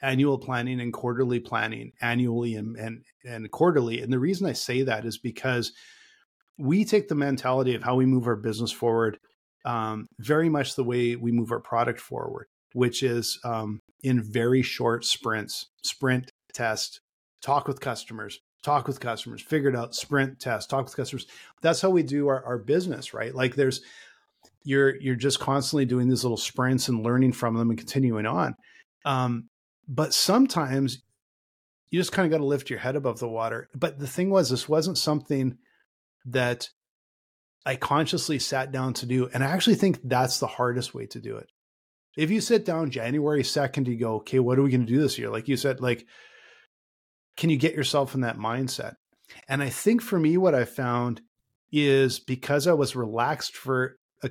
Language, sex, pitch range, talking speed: English, male, 120-140 Hz, 190 wpm